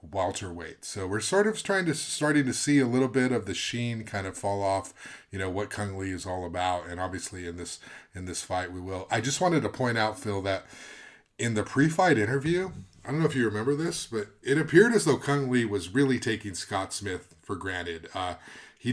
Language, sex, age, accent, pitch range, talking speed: English, male, 30-49, American, 95-125 Hz, 230 wpm